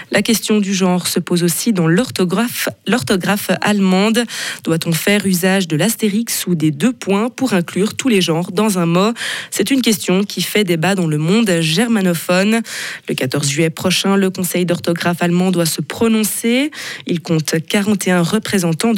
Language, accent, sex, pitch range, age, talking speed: French, French, female, 165-210 Hz, 20-39, 170 wpm